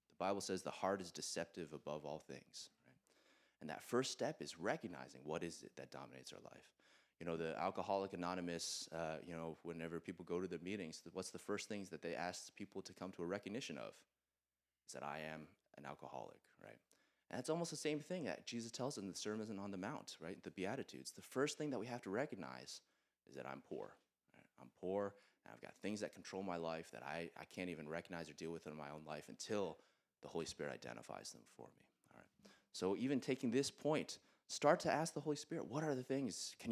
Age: 20-39